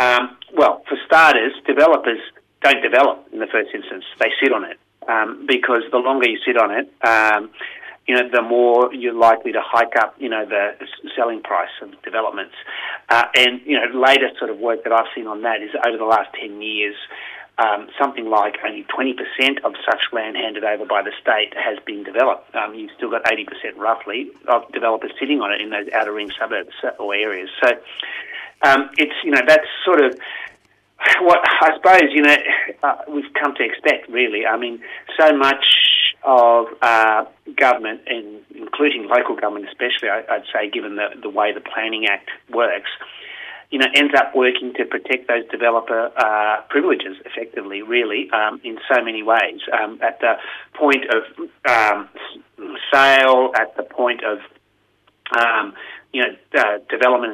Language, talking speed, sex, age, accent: English, 175 wpm, male, 30-49, Australian